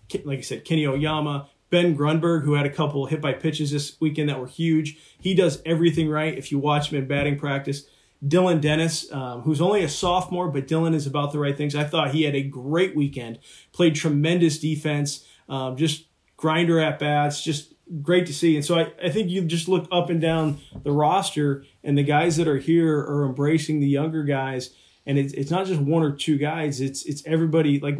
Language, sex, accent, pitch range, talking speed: English, male, American, 140-160 Hz, 215 wpm